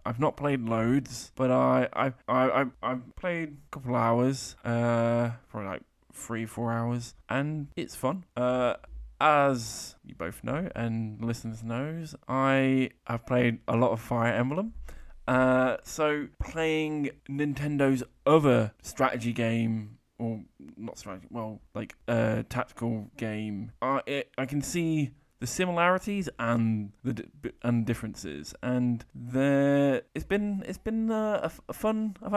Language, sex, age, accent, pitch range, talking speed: English, male, 20-39, British, 115-145 Hz, 140 wpm